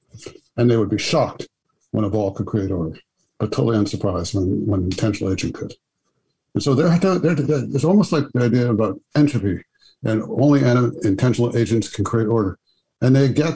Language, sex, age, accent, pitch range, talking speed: English, male, 60-79, American, 105-125 Hz, 175 wpm